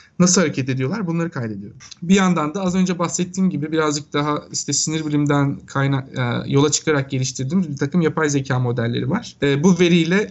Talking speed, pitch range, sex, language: 175 wpm, 130-155 Hz, male, Turkish